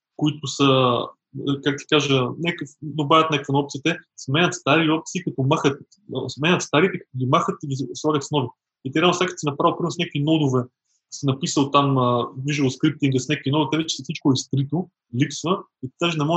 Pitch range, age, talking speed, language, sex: 135-165 Hz, 20-39, 200 wpm, Bulgarian, male